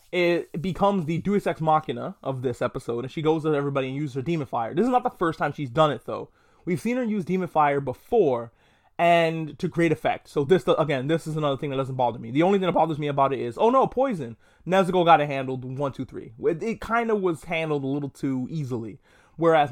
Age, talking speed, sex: 20-39, 245 wpm, male